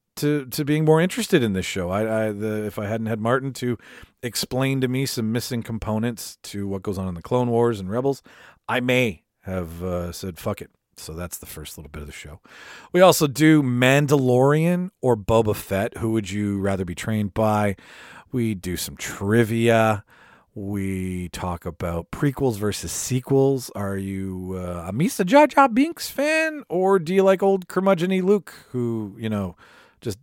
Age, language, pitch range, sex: 40-59, English, 90-135 Hz, male